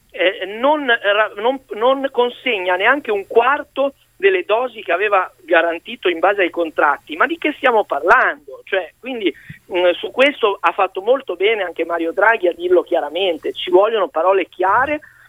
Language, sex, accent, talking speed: Italian, male, native, 160 wpm